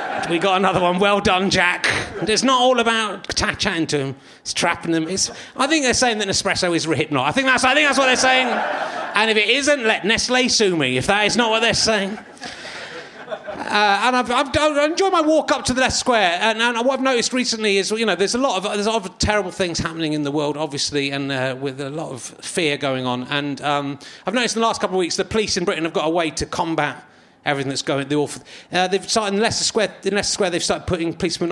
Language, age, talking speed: English, 30-49, 255 wpm